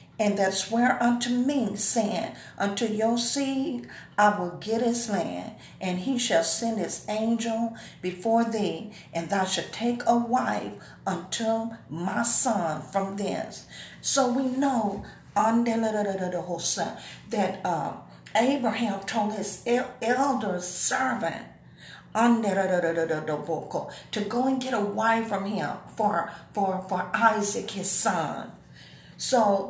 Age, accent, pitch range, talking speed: 50-69, American, 195-240 Hz, 115 wpm